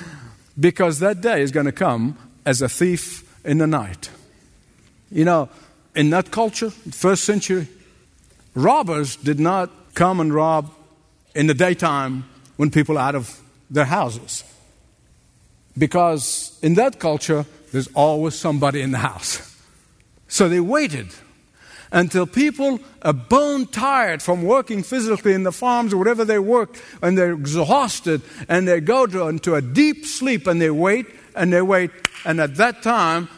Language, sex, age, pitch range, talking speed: English, male, 60-79, 145-200 Hz, 155 wpm